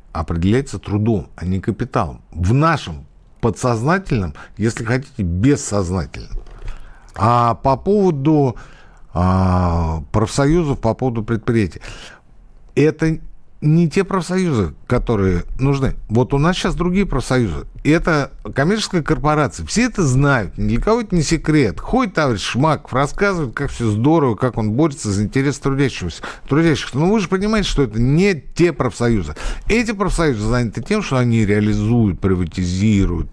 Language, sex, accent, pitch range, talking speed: Russian, male, native, 100-155 Hz, 130 wpm